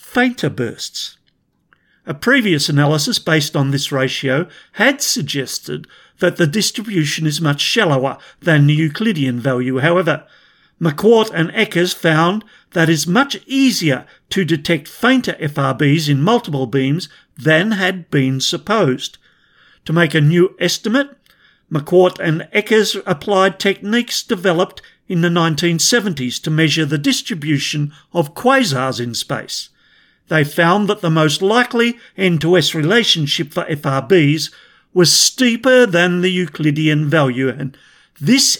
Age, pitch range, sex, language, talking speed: 50-69, 145-200 Hz, male, English, 130 wpm